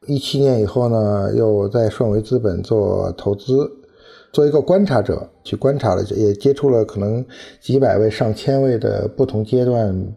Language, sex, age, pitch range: Chinese, male, 50-69, 100-140 Hz